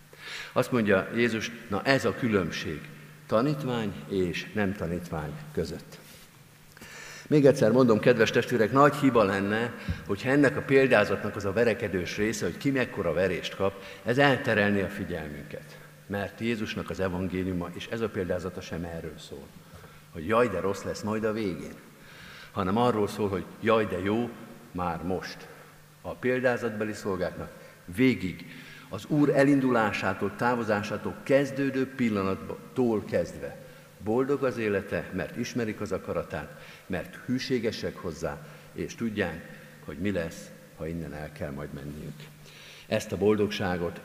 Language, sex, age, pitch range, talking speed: Hungarian, male, 50-69, 90-120 Hz, 135 wpm